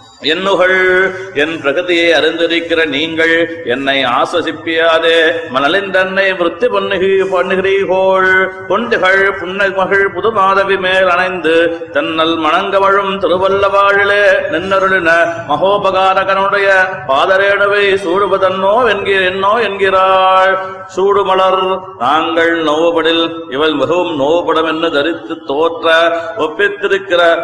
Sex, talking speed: male, 85 wpm